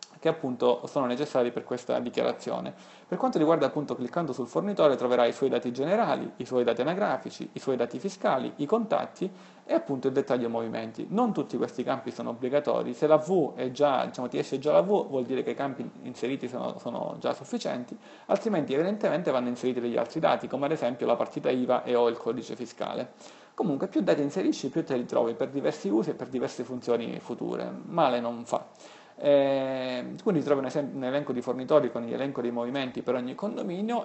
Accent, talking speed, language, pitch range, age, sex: native, 205 wpm, Italian, 125-160 Hz, 40-59, male